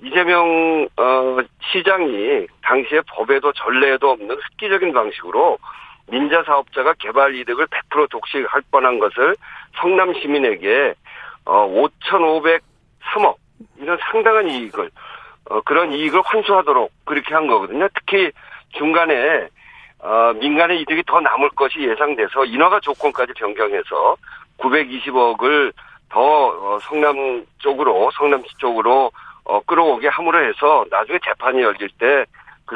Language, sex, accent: Korean, male, native